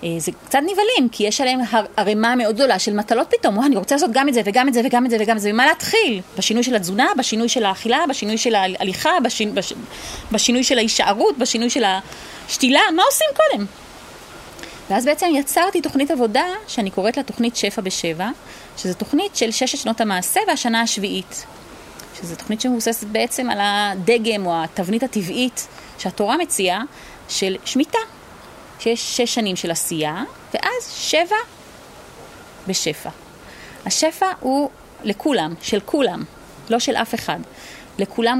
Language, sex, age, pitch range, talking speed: Hebrew, female, 30-49, 200-280 Hz, 155 wpm